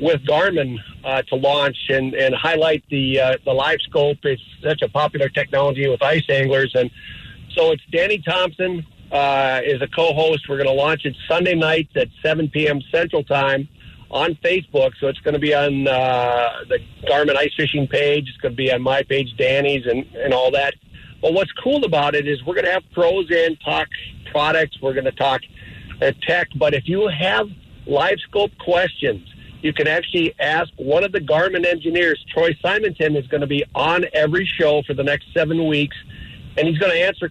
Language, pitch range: English, 135-165 Hz